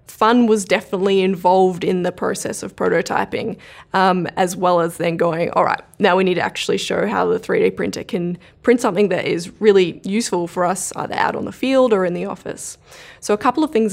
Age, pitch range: 20-39, 180-220 Hz